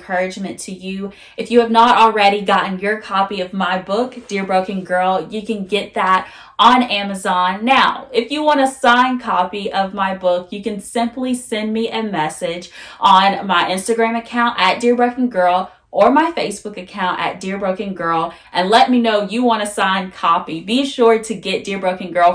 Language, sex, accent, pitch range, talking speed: English, female, American, 180-225 Hz, 195 wpm